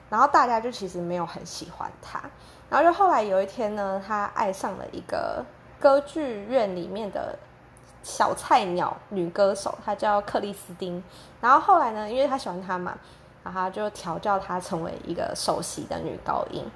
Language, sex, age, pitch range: Chinese, female, 20-39, 195-285 Hz